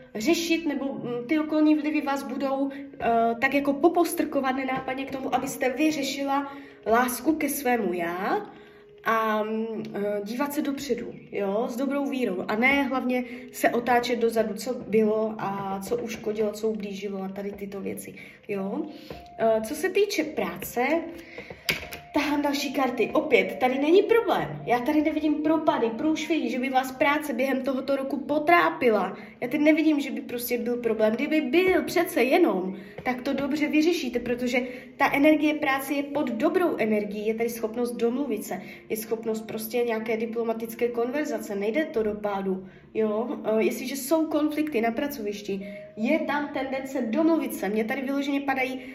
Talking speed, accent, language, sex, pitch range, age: 155 wpm, native, Czech, female, 225-290 Hz, 20-39